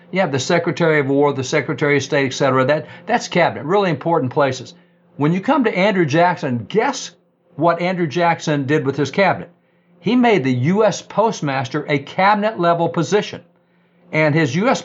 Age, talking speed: 50-69, 170 wpm